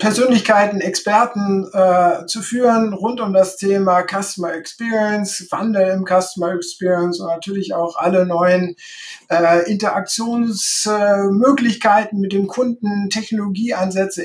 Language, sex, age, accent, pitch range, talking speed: German, male, 50-69, German, 180-215 Hz, 115 wpm